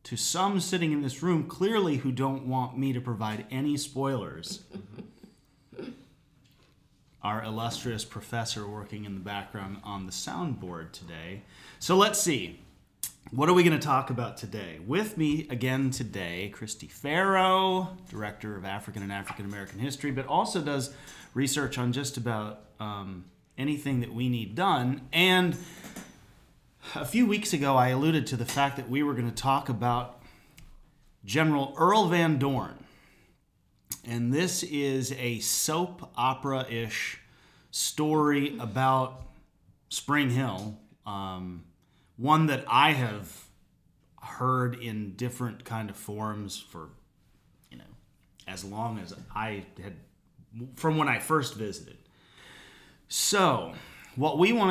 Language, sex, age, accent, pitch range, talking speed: English, male, 30-49, American, 105-145 Hz, 135 wpm